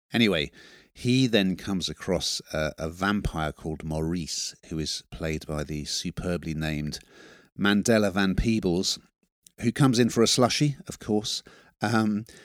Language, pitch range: English, 80-110 Hz